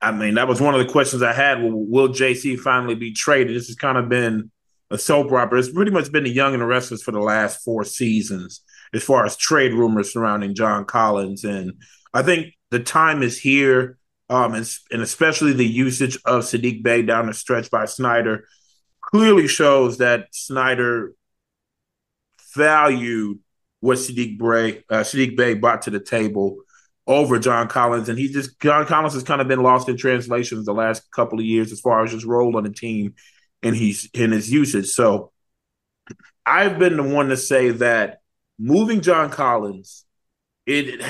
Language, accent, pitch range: English, American, 115-140 Hz